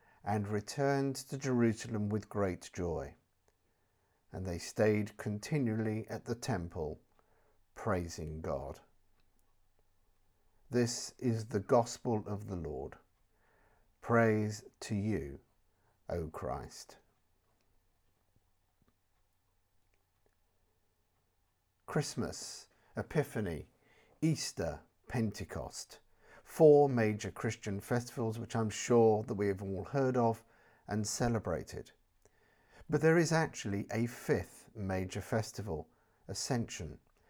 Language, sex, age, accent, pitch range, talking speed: English, male, 50-69, British, 95-120 Hz, 90 wpm